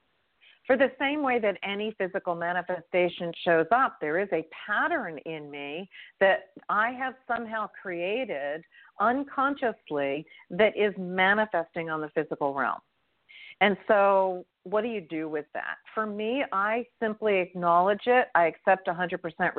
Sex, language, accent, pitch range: female, English, American, 170-240 Hz